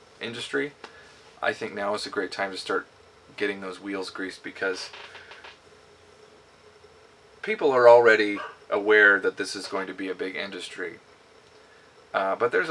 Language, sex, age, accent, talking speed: English, male, 30-49, American, 145 wpm